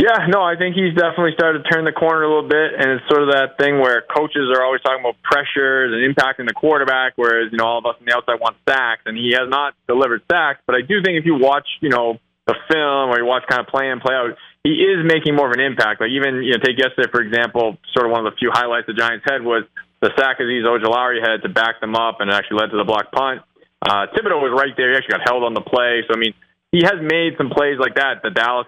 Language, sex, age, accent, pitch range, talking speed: English, male, 20-39, American, 110-135 Hz, 285 wpm